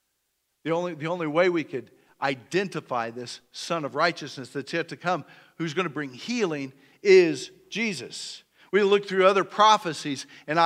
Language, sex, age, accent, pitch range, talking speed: English, male, 50-69, American, 145-185 Hz, 160 wpm